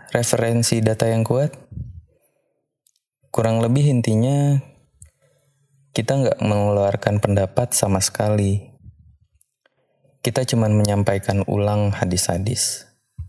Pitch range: 100-120 Hz